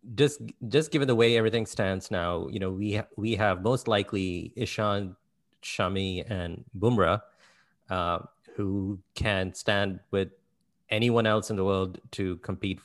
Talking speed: 150 wpm